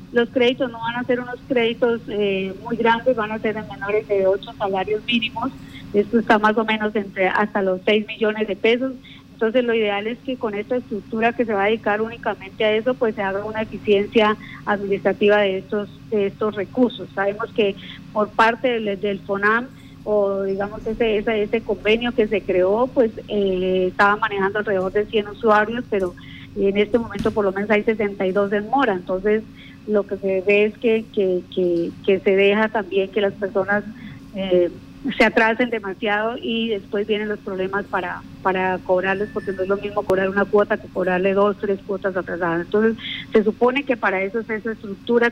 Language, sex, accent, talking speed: Spanish, female, American, 190 wpm